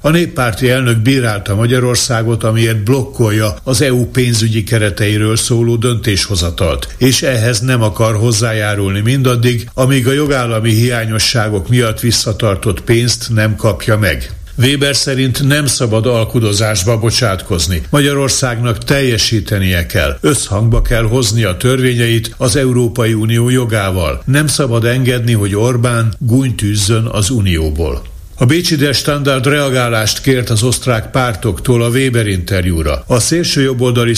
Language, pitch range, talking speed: Hungarian, 110-125 Hz, 120 wpm